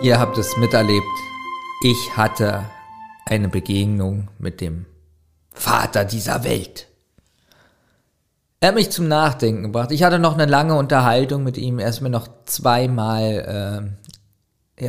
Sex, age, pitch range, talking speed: male, 50-69, 115-140 Hz, 135 wpm